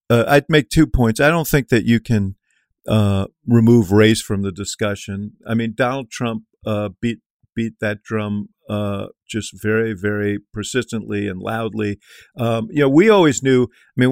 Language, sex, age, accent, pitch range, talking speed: English, male, 50-69, American, 110-130 Hz, 175 wpm